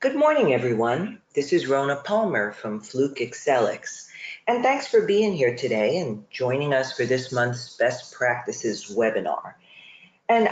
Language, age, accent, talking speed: English, 50-69, American, 150 wpm